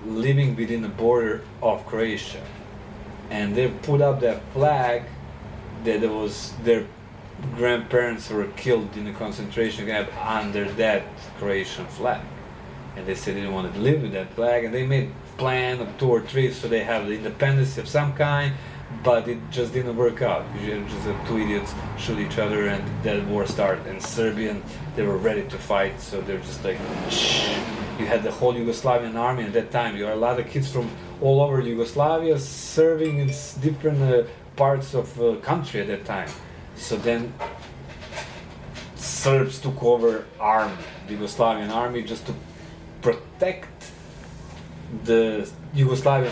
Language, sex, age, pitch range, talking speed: English, male, 30-49, 110-135 Hz, 165 wpm